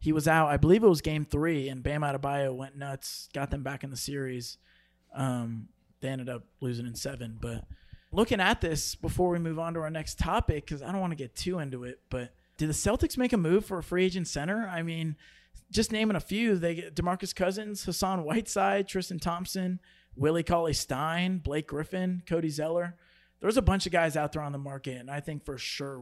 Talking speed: 220 wpm